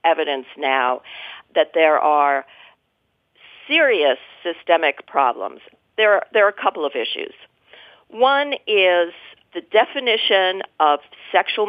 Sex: female